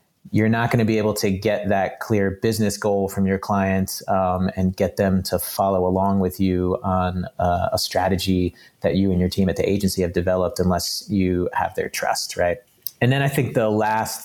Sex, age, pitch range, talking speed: male, 30-49, 95-105 Hz, 210 wpm